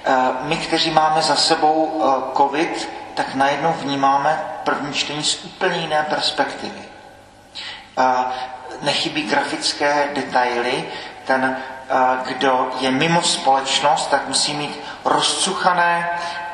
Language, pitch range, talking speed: Czech, 130-155 Hz, 100 wpm